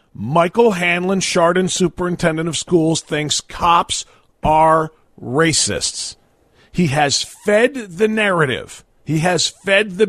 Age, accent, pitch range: 40-59, American, 150-220 Hz